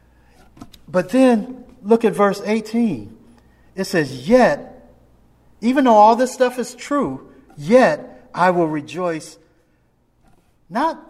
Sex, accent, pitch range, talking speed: male, American, 145-205 Hz, 115 wpm